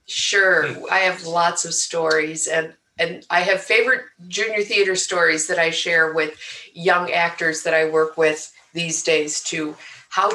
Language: English